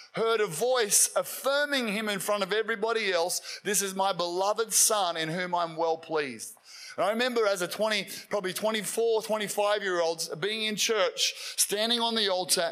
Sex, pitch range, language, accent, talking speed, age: male, 185-225 Hz, English, Australian, 175 wpm, 30-49